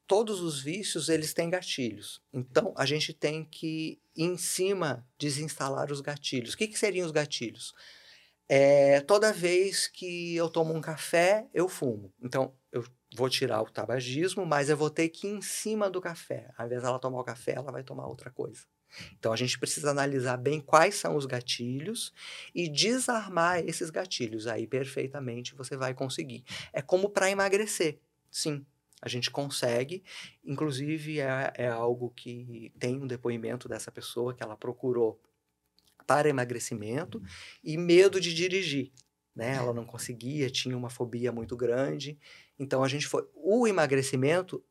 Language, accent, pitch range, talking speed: Portuguese, Brazilian, 125-170 Hz, 160 wpm